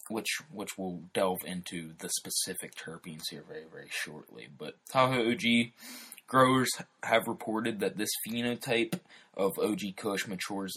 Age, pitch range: 20-39, 85-115 Hz